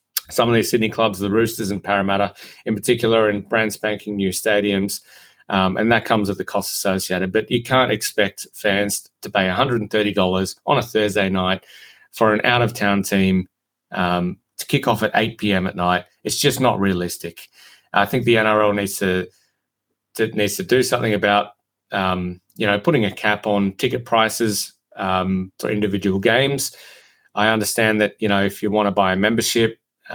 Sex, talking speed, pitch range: male, 185 wpm, 95-115 Hz